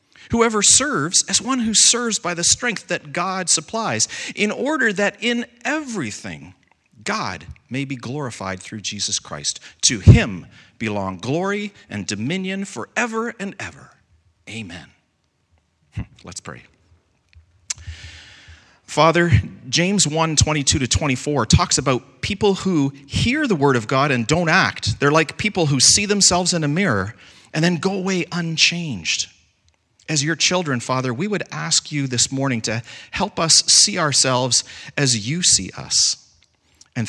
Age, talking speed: 40-59, 140 wpm